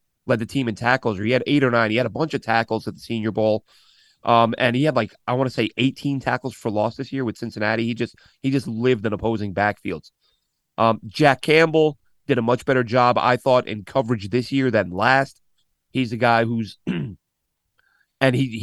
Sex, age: male, 30-49